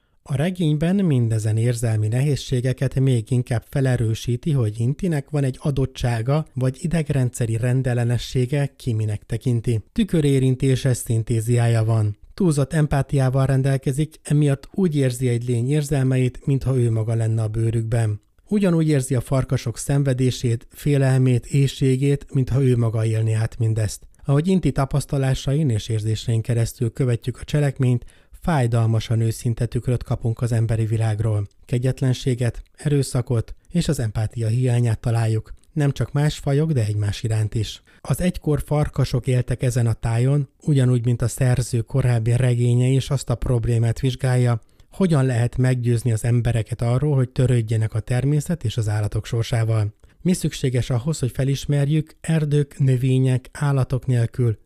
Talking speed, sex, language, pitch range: 135 wpm, male, Hungarian, 115-140 Hz